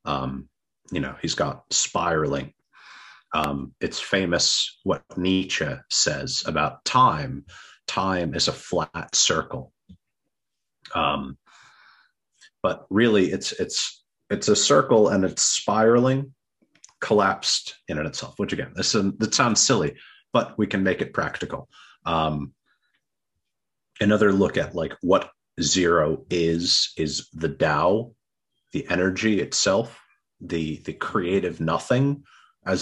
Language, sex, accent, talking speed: English, male, American, 125 wpm